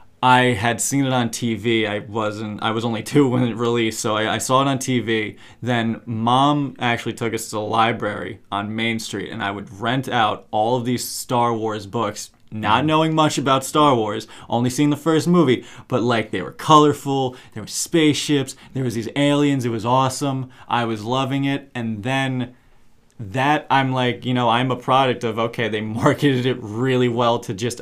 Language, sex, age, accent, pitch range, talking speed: English, male, 20-39, American, 110-130 Hz, 200 wpm